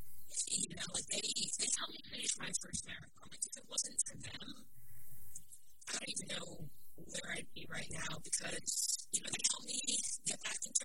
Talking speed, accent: 205 wpm, American